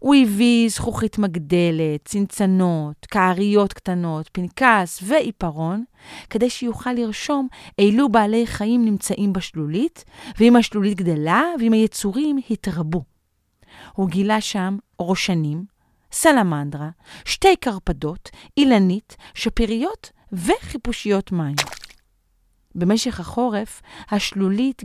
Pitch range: 175-250 Hz